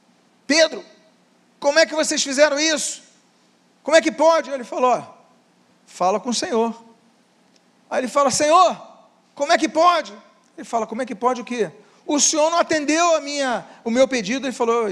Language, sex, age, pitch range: Portuguese, male, 40-59, 235-295 Hz